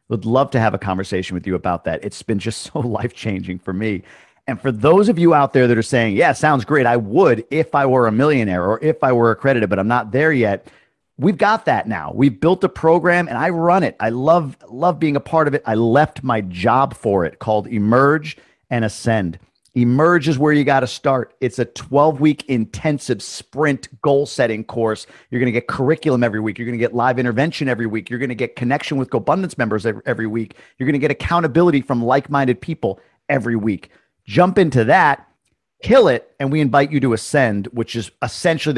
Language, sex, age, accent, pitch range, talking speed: English, male, 40-59, American, 110-140 Hz, 215 wpm